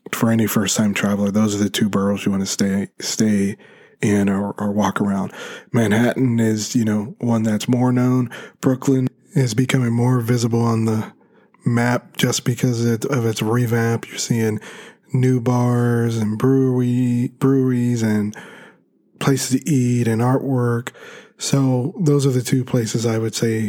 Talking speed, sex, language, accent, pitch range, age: 155 wpm, male, English, American, 110-130 Hz, 20-39